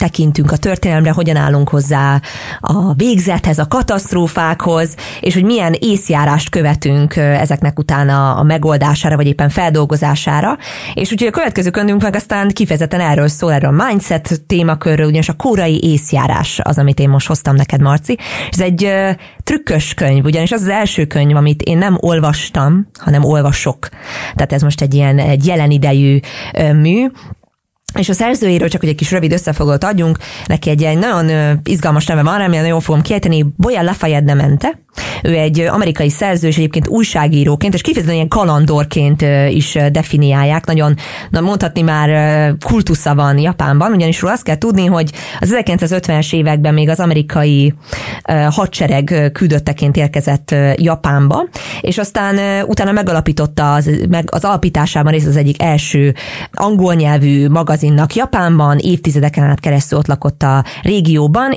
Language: English